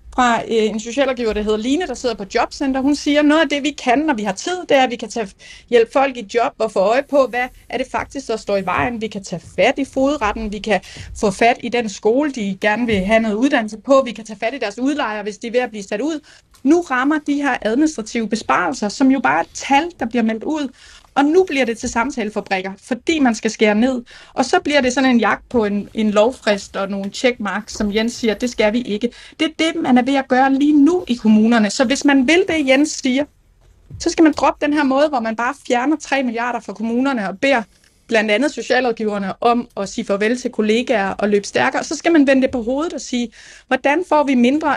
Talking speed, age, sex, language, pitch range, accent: 250 wpm, 30-49, female, Danish, 220-280 Hz, native